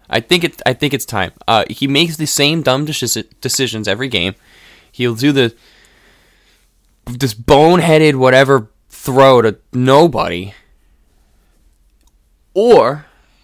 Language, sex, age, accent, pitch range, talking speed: English, male, 20-39, American, 105-150 Hz, 120 wpm